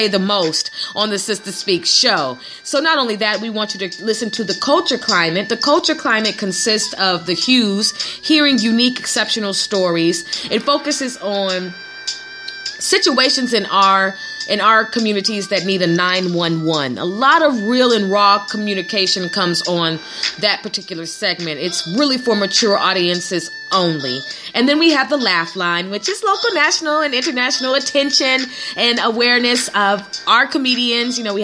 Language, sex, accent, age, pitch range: Japanese, female, American, 30-49, 195-260 Hz